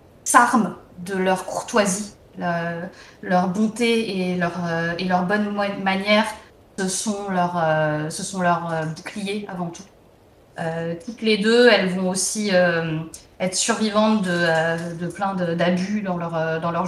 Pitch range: 175-215 Hz